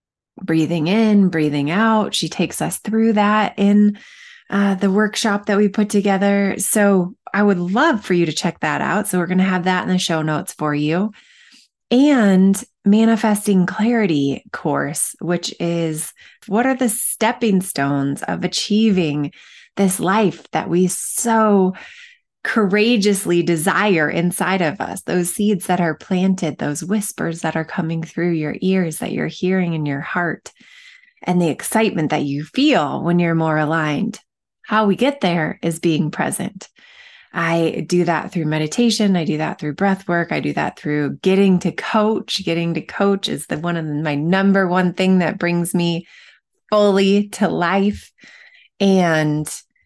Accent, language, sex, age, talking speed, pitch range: American, English, female, 20-39, 160 wpm, 165-210 Hz